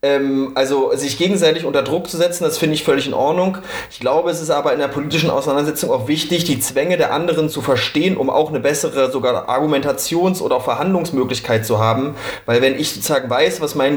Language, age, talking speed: German, 30-49, 210 wpm